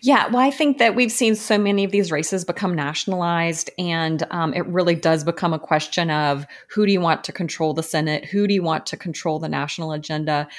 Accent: American